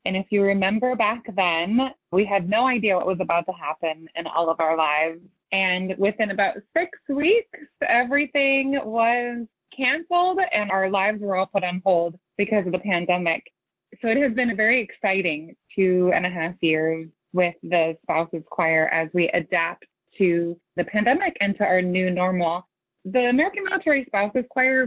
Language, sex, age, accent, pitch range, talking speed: English, female, 20-39, American, 180-230 Hz, 175 wpm